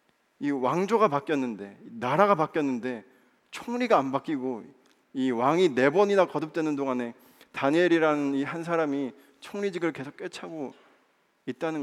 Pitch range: 130-185 Hz